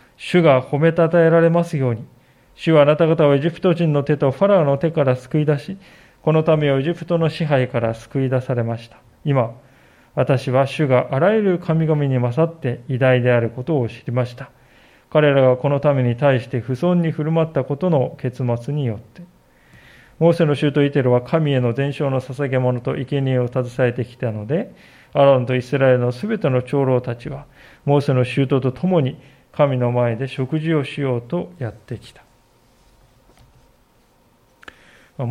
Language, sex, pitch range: Japanese, male, 125-155 Hz